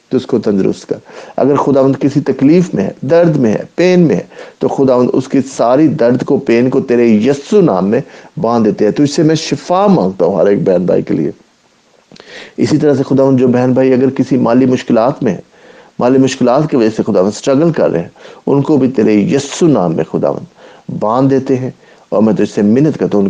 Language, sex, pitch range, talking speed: English, male, 110-145 Hz, 190 wpm